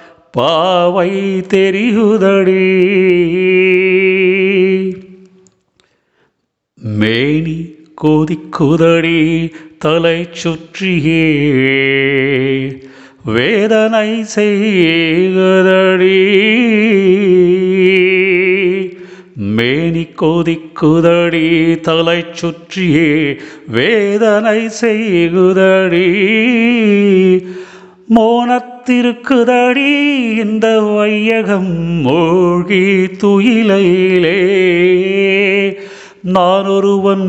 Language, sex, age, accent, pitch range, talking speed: Tamil, male, 40-59, native, 155-195 Hz, 30 wpm